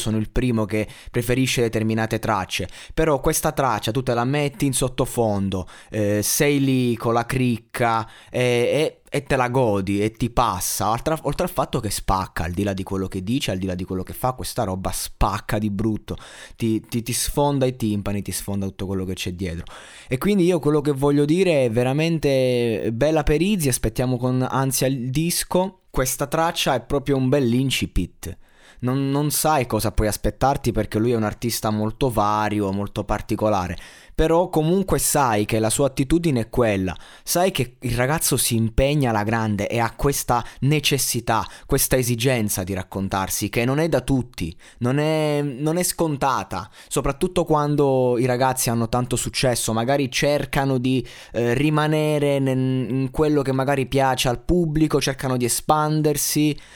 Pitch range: 110-145 Hz